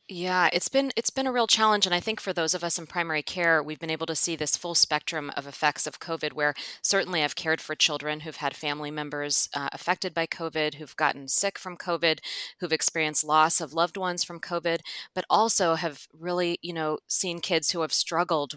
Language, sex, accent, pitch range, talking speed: English, female, American, 155-185 Hz, 220 wpm